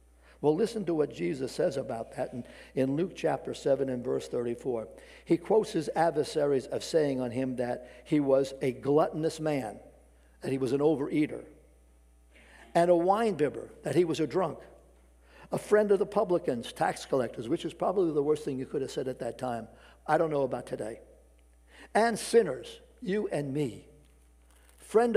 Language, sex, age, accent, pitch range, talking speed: English, male, 60-79, American, 125-170 Hz, 175 wpm